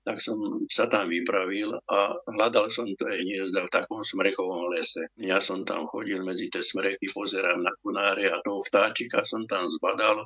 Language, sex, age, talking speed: Slovak, male, 60-79, 175 wpm